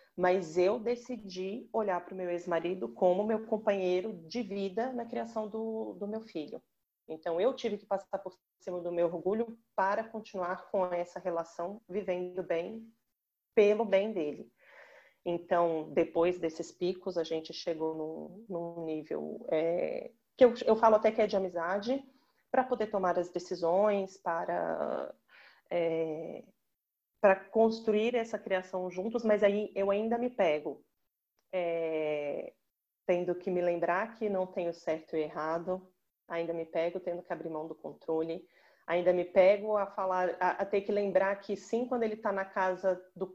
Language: Portuguese